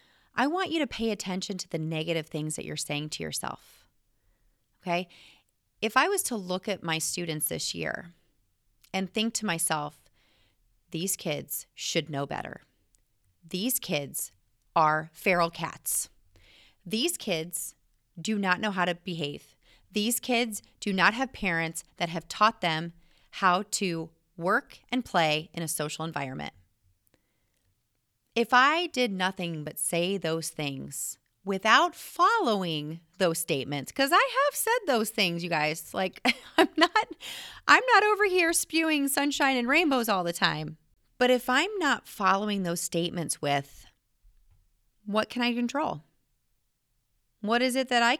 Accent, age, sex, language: American, 30-49, female, English